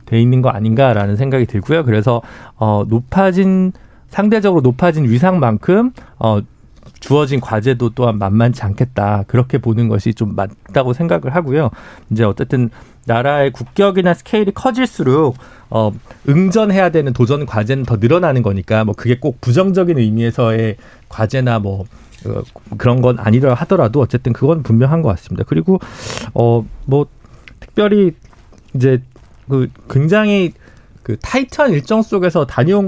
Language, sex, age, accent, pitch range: Korean, male, 40-59, native, 115-170 Hz